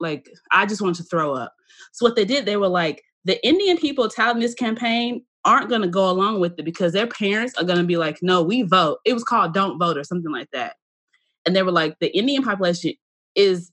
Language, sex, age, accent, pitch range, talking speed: English, female, 20-39, American, 165-215 Hz, 240 wpm